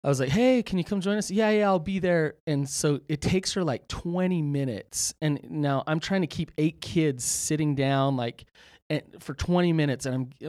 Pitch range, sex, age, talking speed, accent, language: 120-155 Hz, male, 30-49, 225 wpm, American, English